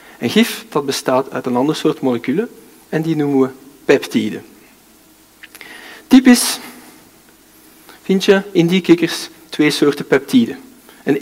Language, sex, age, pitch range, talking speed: Dutch, male, 50-69, 135-190 Hz, 130 wpm